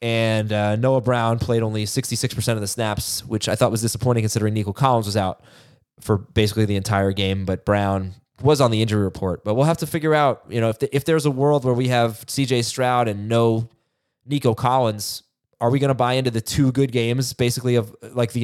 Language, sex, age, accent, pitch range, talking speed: English, male, 20-39, American, 105-130 Hz, 220 wpm